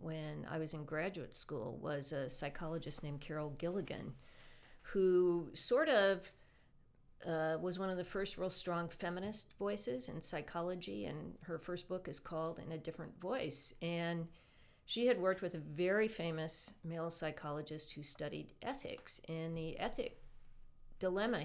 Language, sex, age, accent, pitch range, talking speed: English, female, 50-69, American, 160-180 Hz, 150 wpm